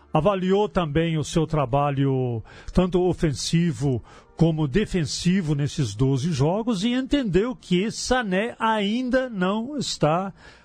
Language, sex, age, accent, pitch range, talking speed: Portuguese, male, 50-69, Brazilian, 140-205 Hz, 105 wpm